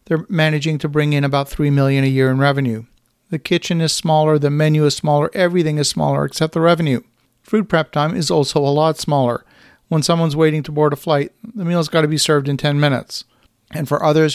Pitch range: 135-155 Hz